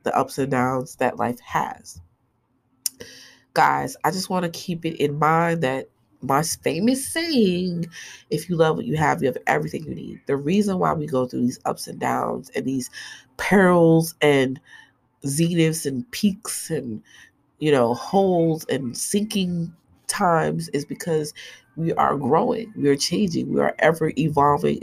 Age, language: 30-49, English